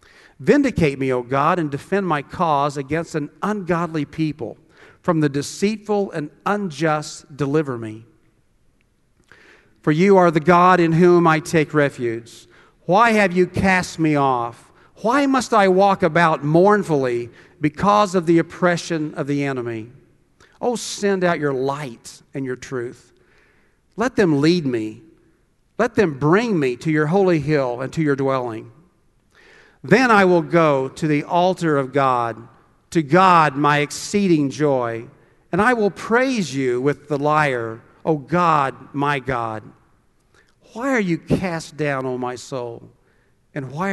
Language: English